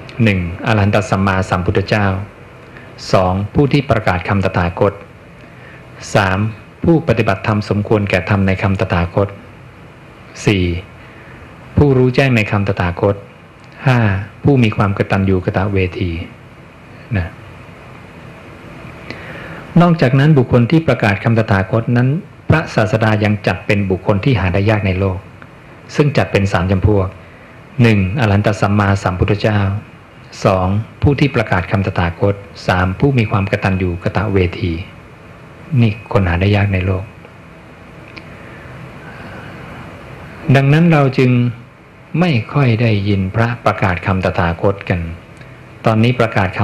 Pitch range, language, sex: 95-125 Hz, English, male